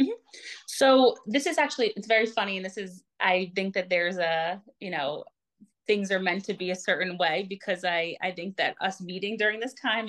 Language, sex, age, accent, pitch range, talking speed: English, female, 30-49, American, 175-215 Hz, 215 wpm